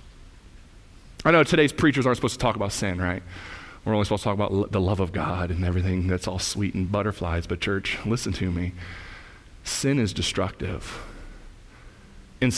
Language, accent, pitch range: English, American, 95-140 Hz